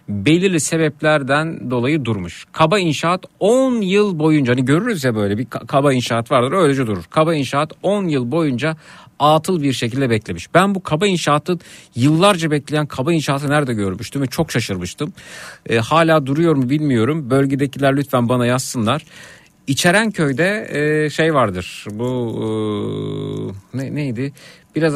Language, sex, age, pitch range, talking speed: Turkish, male, 50-69, 120-160 Hz, 140 wpm